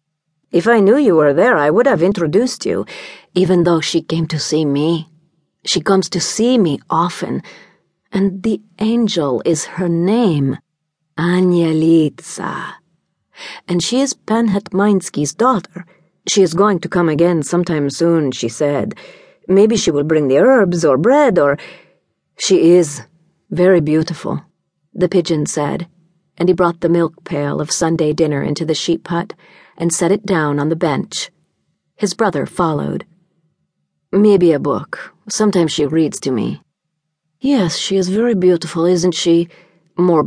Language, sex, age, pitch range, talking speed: English, female, 40-59, 160-195 Hz, 150 wpm